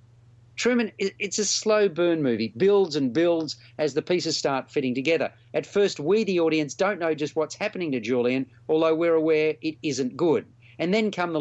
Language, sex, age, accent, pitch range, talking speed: English, male, 40-59, Australian, 125-165 Hz, 195 wpm